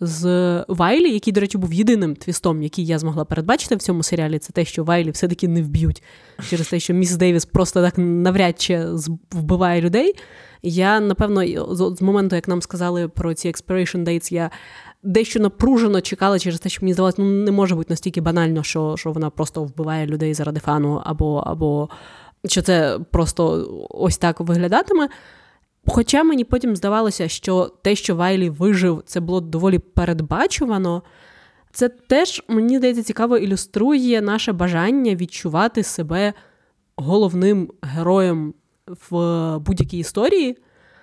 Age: 20-39